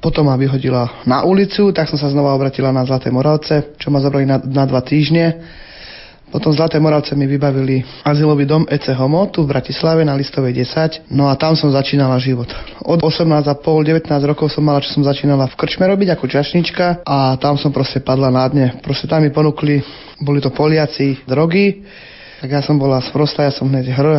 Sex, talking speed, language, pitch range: male, 205 wpm, Slovak, 135-155 Hz